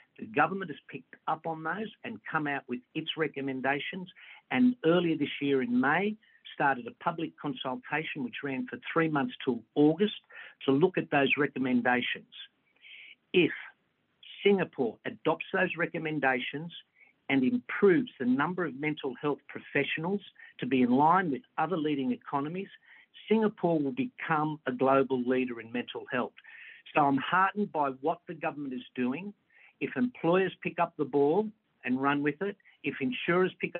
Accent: Australian